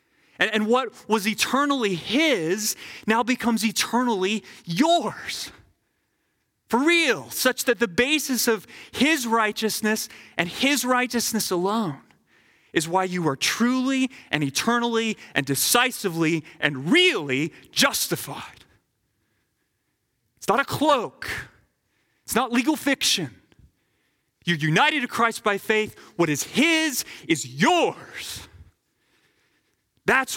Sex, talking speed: male, 105 wpm